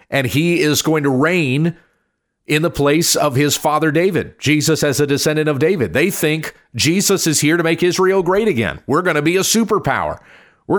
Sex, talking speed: male, 200 wpm